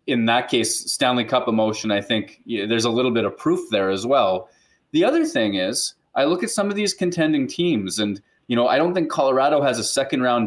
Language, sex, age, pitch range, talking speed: English, male, 20-39, 110-150 Hz, 235 wpm